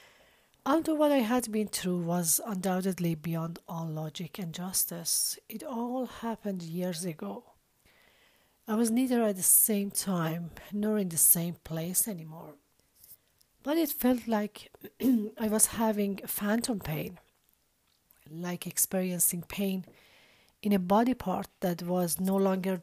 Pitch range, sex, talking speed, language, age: 170-210 Hz, female, 135 wpm, English, 40-59